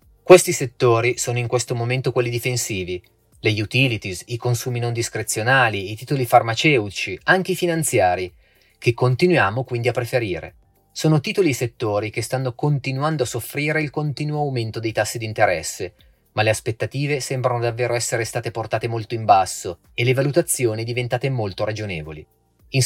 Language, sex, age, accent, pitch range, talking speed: Italian, male, 30-49, native, 110-140 Hz, 155 wpm